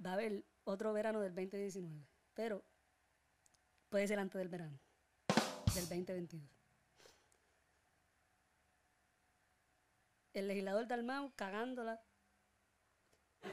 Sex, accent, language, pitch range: female, American, Spanish, 190-245 Hz